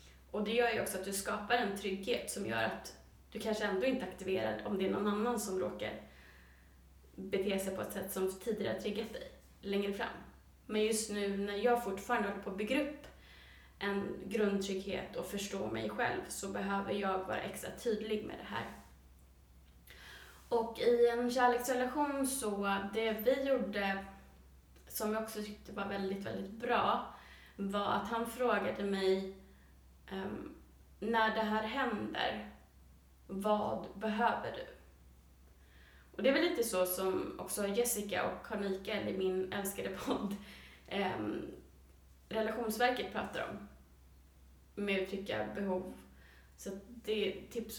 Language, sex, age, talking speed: Swedish, female, 20-39, 145 wpm